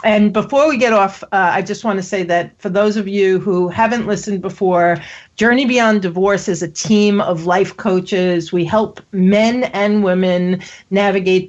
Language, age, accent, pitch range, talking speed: English, 40-59, American, 170-205 Hz, 185 wpm